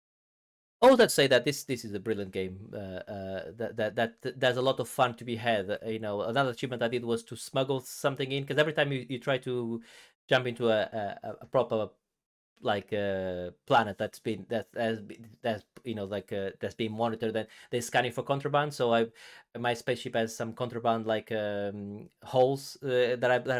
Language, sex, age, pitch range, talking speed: English, male, 30-49, 110-135 Hz, 210 wpm